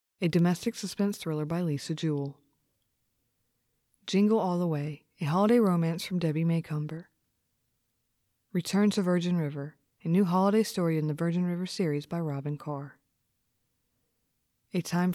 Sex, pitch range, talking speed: female, 140-180 Hz, 140 wpm